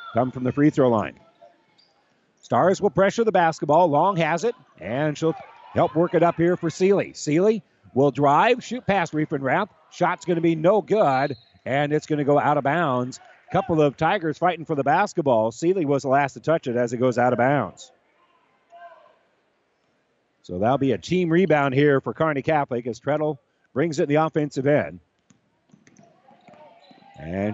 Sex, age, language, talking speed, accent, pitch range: male, 50-69, English, 175 wpm, American, 130-170 Hz